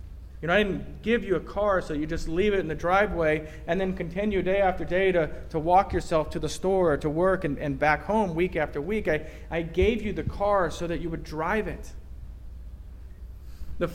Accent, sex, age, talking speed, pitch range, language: American, male, 40-59, 225 wpm, 120-180 Hz, English